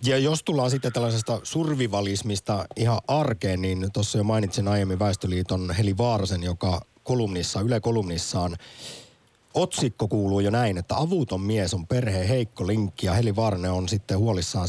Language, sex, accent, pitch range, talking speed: Finnish, male, native, 95-115 Hz, 145 wpm